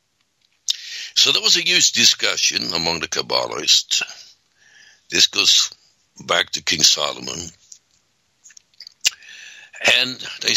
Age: 60-79